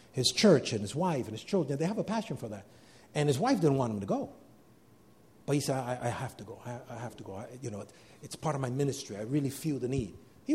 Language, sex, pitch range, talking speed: English, male, 135-205 Hz, 275 wpm